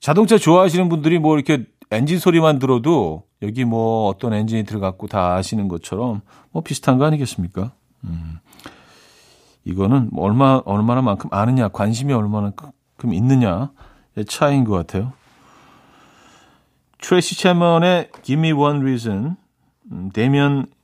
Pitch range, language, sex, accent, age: 105-155 Hz, Korean, male, native, 40-59